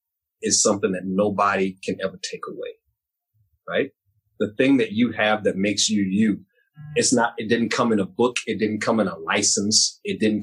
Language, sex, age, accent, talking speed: English, male, 30-49, American, 195 wpm